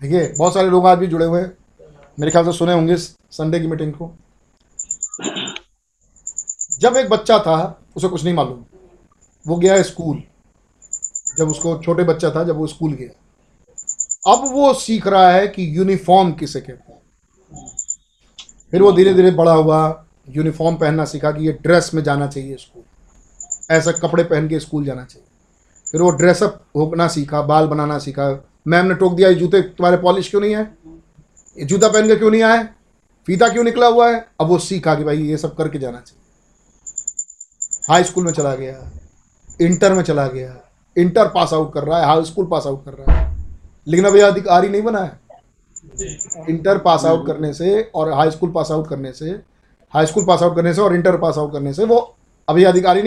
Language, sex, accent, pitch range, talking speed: Hindi, male, native, 150-185 Hz, 190 wpm